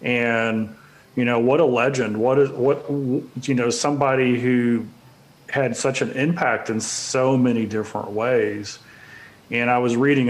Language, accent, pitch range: English, American, 115-135 Hz